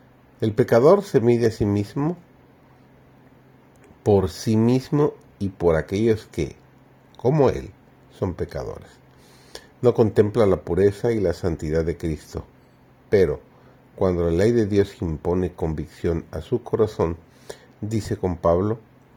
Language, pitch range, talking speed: Spanish, 85-120 Hz, 130 wpm